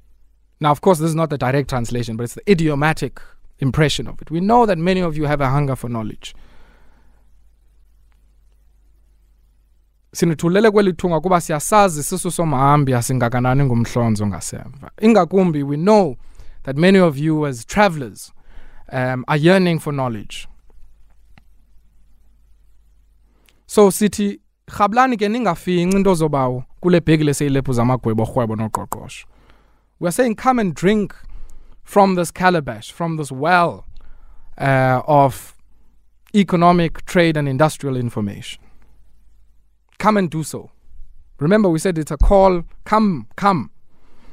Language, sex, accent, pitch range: Japanese, male, South African, 115-180 Hz